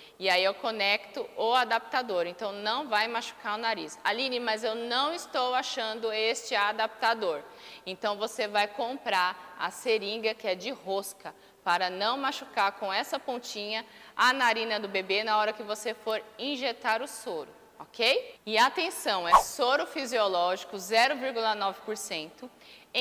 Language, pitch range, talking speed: Portuguese, 200-255 Hz, 145 wpm